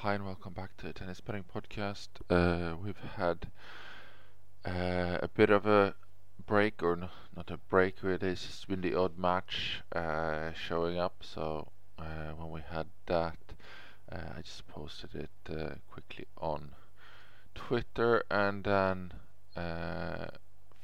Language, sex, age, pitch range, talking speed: English, male, 20-39, 85-105 Hz, 150 wpm